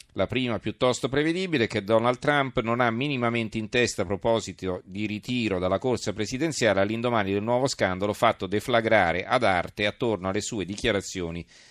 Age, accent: 40-59, native